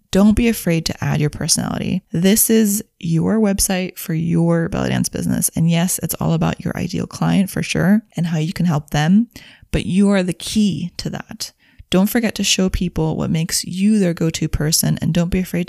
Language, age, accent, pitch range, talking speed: English, 20-39, American, 170-205 Hz, 205 wpm